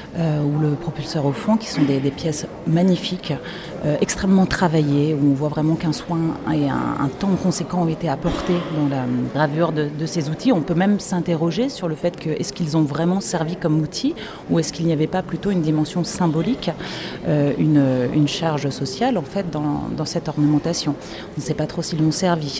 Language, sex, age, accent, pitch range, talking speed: French, female, 30-49, French, 150-175 Hz, 210 wpm